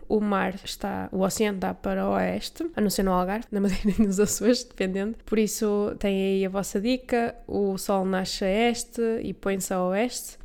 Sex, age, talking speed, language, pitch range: female, 10-29, 200 wpm, Portuguese, 205-245 Hz